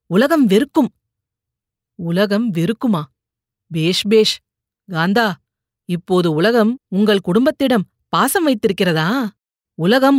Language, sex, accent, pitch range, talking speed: Tamil, female, native, 180-240 Hz, 75 wpm